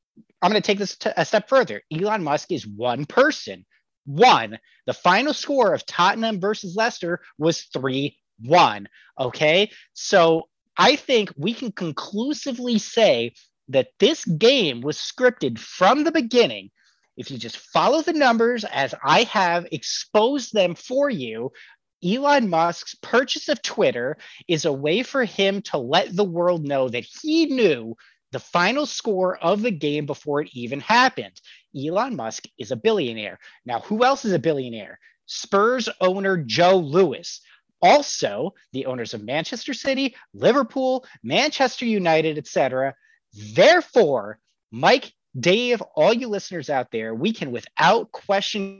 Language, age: English, 30-49